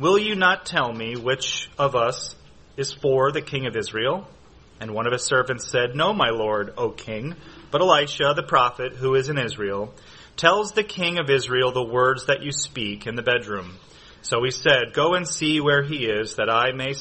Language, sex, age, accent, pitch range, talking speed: English, male, 30-49, American, 120-155 Hz, 205 wpm